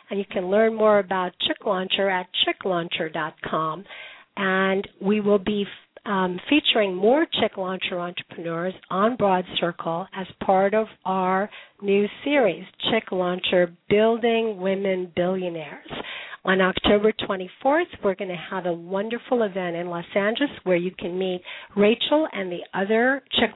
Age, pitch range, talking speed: 50-69, 185-220 Hz, 145 wpm